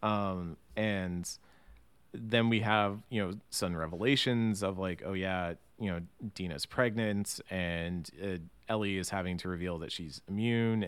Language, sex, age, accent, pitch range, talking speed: English, male, 30-49, American, 90-110 Hz, 150 wpm